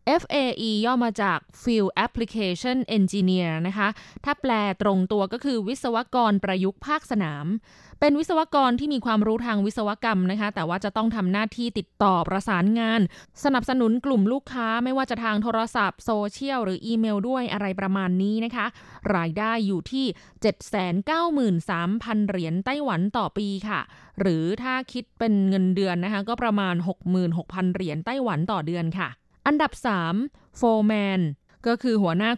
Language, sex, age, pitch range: Thai, female, 20-39, 190-235 Hz